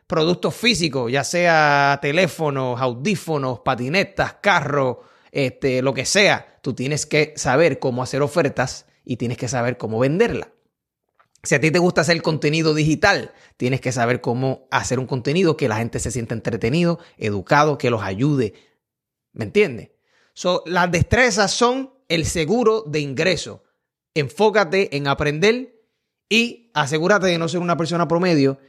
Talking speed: 145 wpm